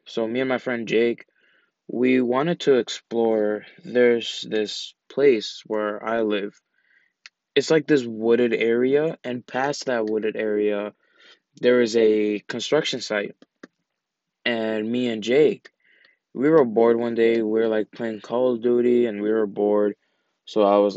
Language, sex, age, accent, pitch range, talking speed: English, male, 20-39, American, 105-125 Hz, 155 wpm